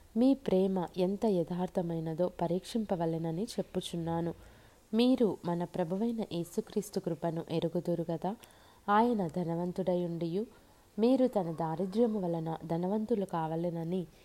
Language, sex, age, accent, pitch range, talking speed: Telugu, female, 20-39, native, 170-205 Hz, 85 wpm